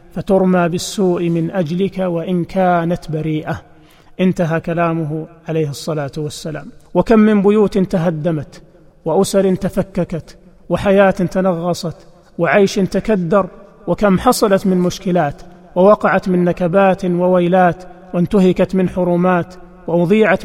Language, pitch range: Arabic, 175-190 Hz